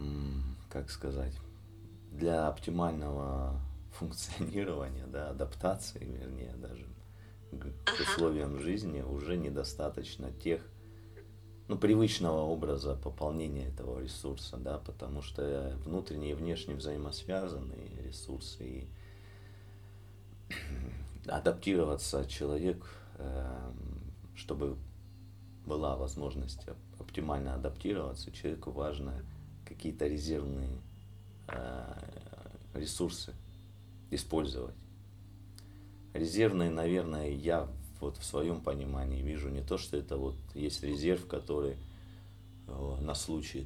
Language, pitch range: Russian, 70-95 Hz